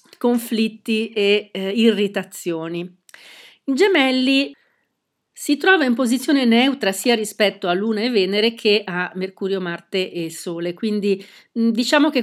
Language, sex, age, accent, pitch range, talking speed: Italian, female, 40-59, native, 185-225 Hz, 130 wpm